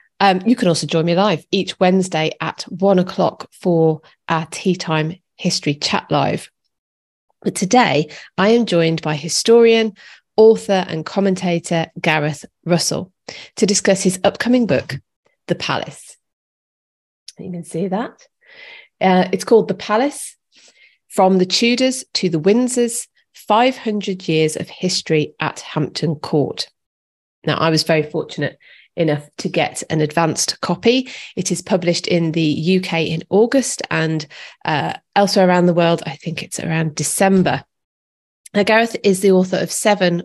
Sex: female